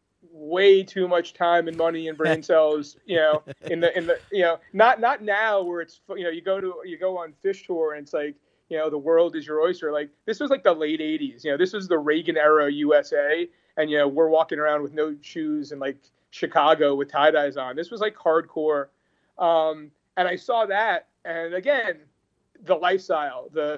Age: 30-49